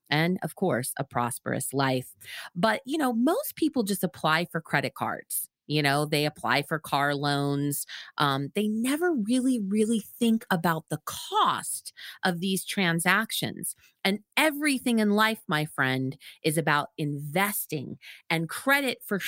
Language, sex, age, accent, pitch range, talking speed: English, female, 30-49, American, 150-230 Hz, 145 wpm